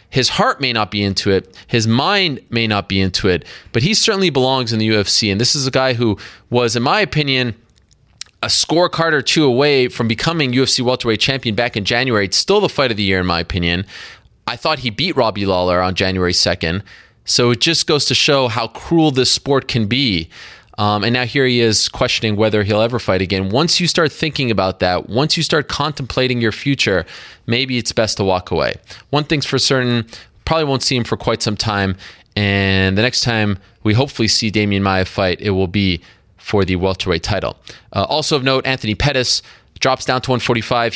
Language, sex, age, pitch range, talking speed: English, male, 20-39, 105-150 Hz, 210 wpm